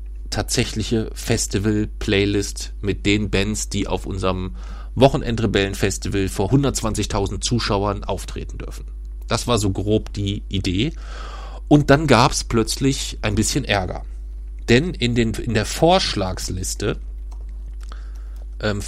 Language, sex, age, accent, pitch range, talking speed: German, male, 40-59, German, 90-115 Hz, 110 wpm